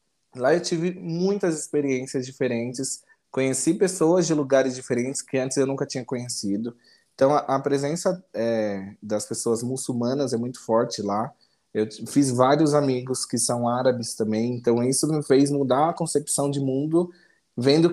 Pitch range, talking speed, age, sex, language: 115-155 Hz, 160 wpm, 20-39, male, Portuguese